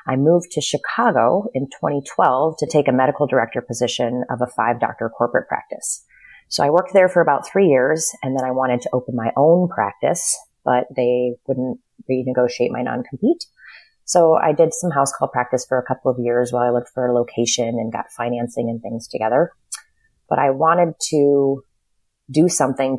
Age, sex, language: 30-49, female, English